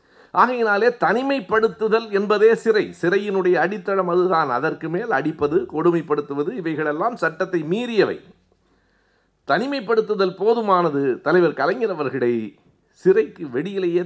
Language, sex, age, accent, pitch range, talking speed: Tamil, male, 60-79, native, 115-190 Hz, 90 wpm